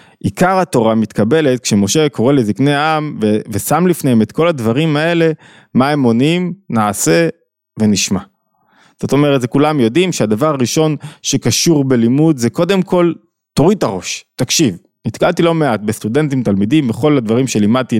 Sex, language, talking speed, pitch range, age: male, Hebrew, 140 wpm, 120-170 Hz, 20-39